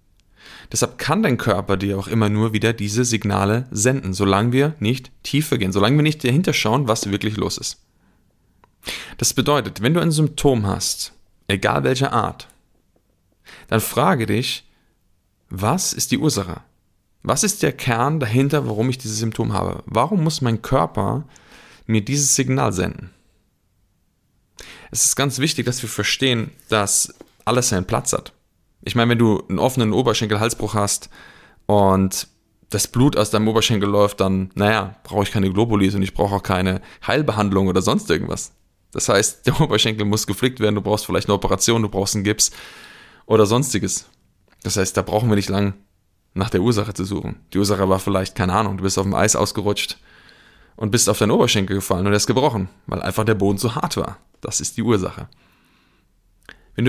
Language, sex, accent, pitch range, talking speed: German, male, German, 95-120 Hz, 175 wpm